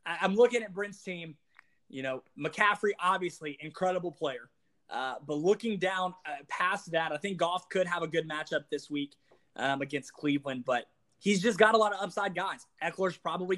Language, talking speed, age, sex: English, 185 wpm, 20-39, male